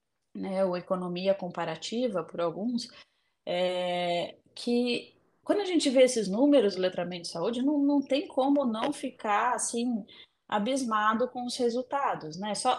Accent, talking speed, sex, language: Brazilian, 130 wpm, female, Portuguese